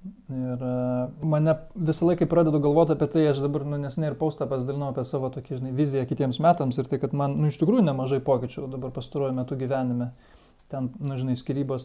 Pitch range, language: 130-155 Hz, English